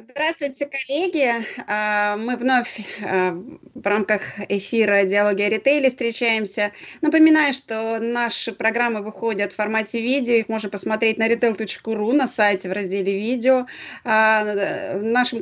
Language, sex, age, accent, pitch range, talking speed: Russian, female, 30-49, native, 195-245 Hz, 120 wpm